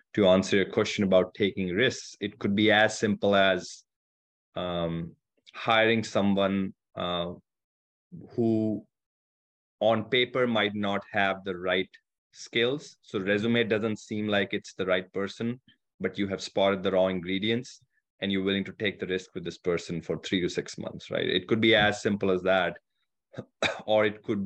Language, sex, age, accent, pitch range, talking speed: Hebrew, male, 20-39, Indian, 90-105 Hz, 165 wpm